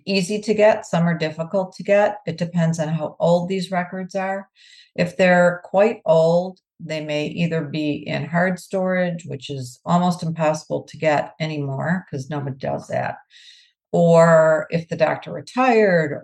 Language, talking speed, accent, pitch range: English, 160 wpm, American, 155-190 Hz